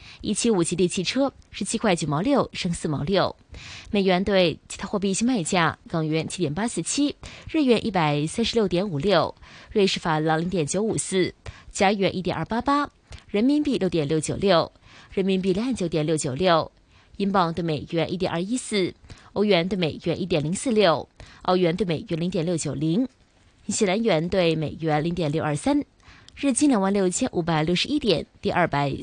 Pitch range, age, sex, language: 160-225 Hz, 20-39, female, Chinese